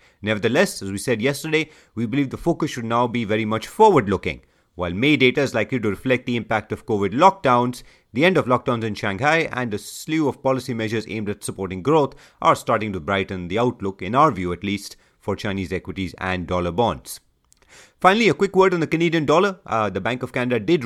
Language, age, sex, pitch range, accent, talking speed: English, 30-49, male, 100-140 Hz, Indian, 215 wpm